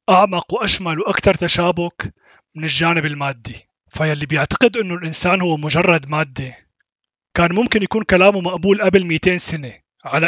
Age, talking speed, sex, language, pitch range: 30-49, 140 wpm, male, Arabic, 155-190 Hz